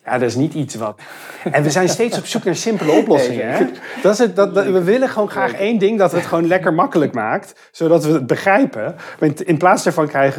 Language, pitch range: Dutch, 125-170 Hz